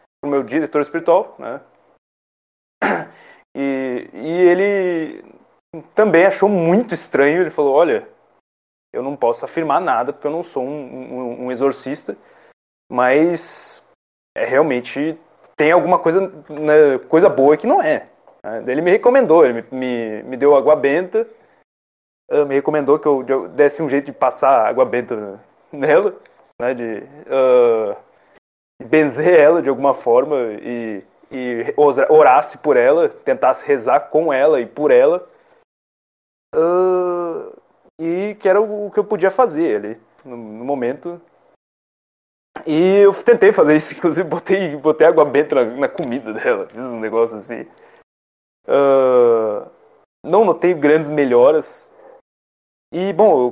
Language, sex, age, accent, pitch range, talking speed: Portuguese, male, 20-39, Brazilian, 130-195 Hz, 140 wpm